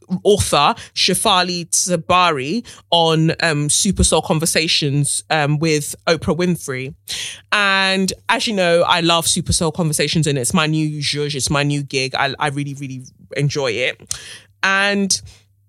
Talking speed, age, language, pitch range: 140 wpm, 20-39, English, 145-185 Hz